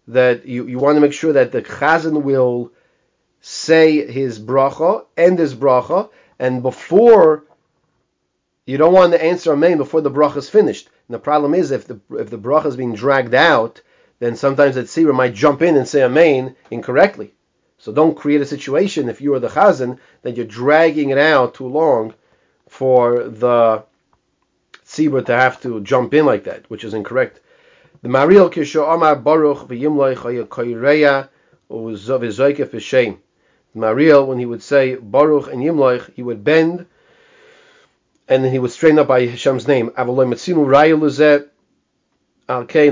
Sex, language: male, English